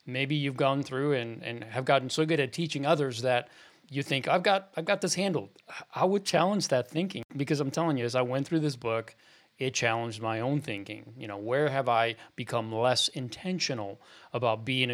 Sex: male